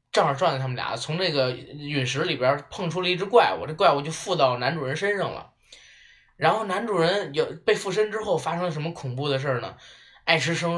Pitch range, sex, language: 145-225 Hz, male, Chinese